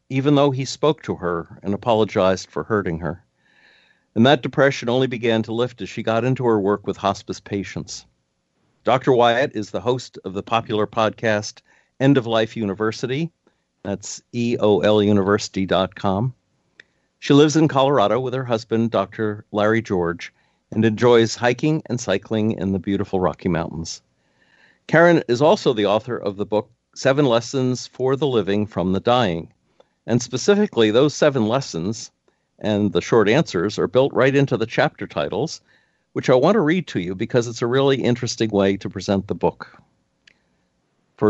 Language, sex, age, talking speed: English, male, 50-69, 165 wpm